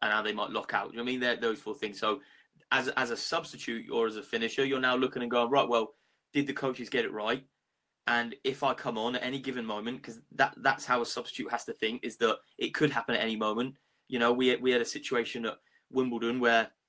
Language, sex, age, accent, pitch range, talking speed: English, male, 20-39, British, 120-135 Hz, 260 wpm